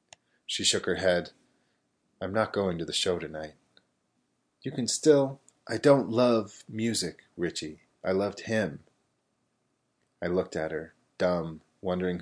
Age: 30-49